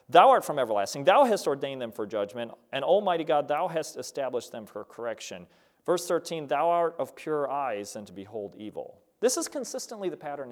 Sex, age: male, 40-59